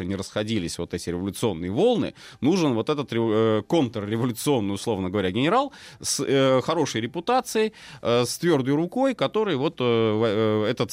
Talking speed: 120 wpm